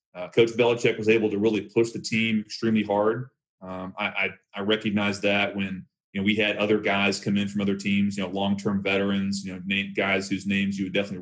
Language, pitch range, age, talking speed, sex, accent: English, 100-110 Hz, 30-49, 230 wpm, male, American